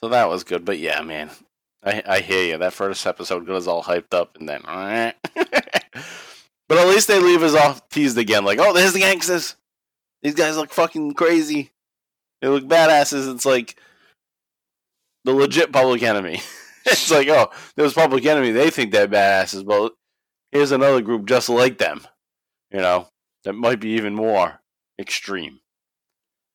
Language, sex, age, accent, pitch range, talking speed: English, male, 20-39, American, 95-145 Hz, 170 wpm